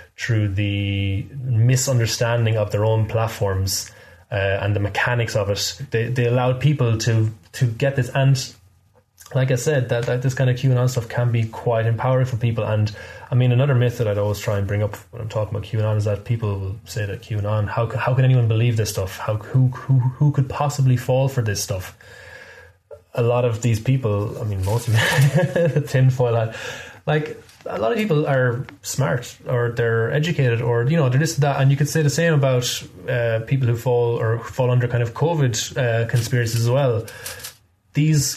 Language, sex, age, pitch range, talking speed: English, male, 20-39, 105-130 Hz, 205 wpm